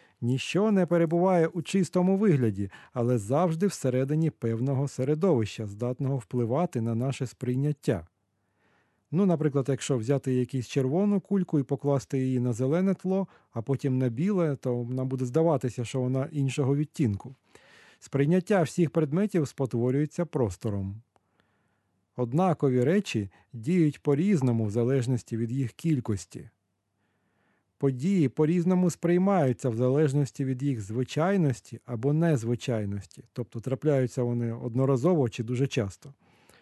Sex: male